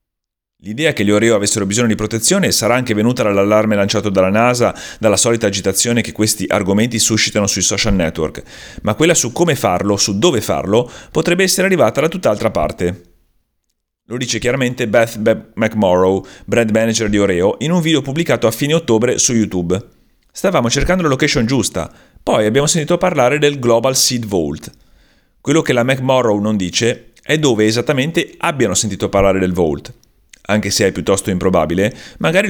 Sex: male